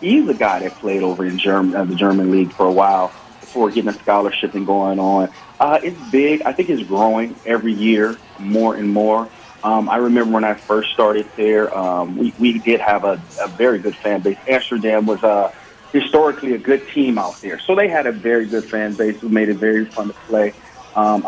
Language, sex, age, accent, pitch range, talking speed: English, male, 30-49, American, 105-125 Hz, 220 wpm